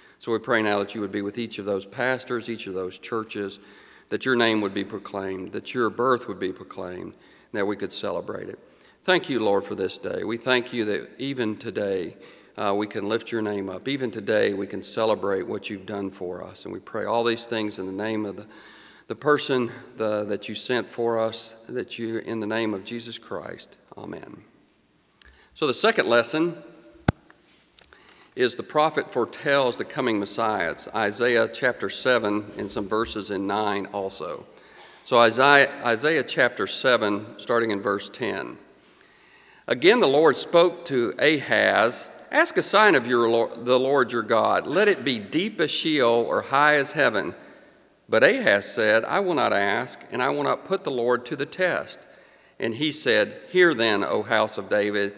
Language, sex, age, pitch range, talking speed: English, male, 40-59, 105-130 Hz, 185 wpm